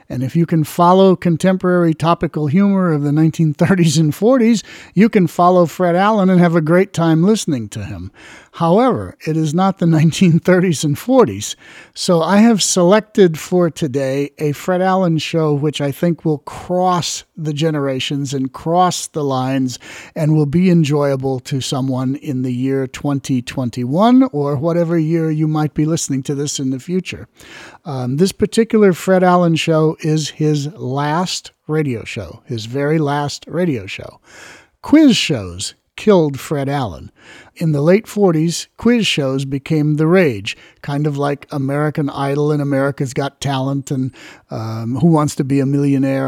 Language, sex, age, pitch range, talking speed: English, male, 50-69, 135-175 Hz, 160 wpm